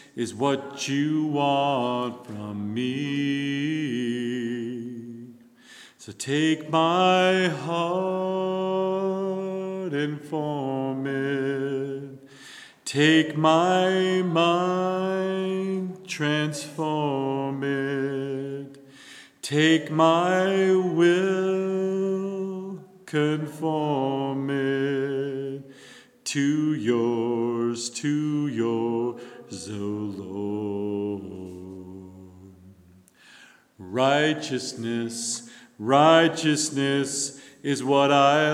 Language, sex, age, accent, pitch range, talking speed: English, male, 40-59, American, 120-155 Hz, 55 wpm